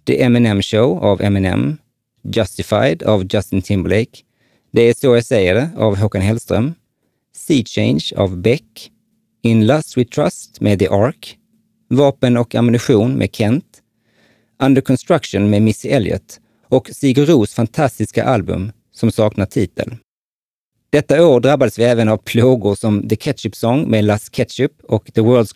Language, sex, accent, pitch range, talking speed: Swedish, male, Norwegian, 105-130 Hz, 140 wpm